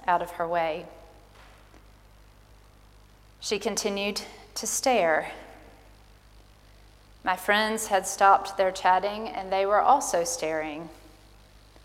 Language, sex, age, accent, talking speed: English, female, 40-59, American, 95 wpm